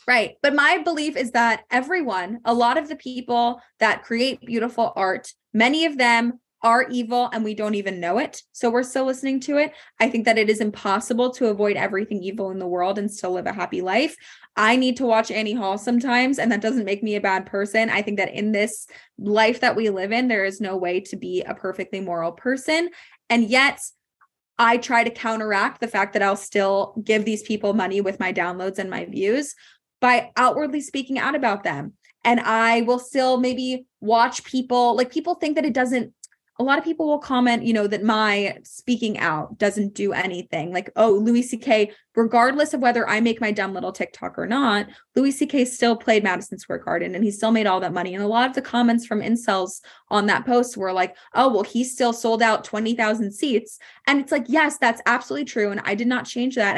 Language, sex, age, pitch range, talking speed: English, female, 20-39, 210-255 Hz, 215 wpm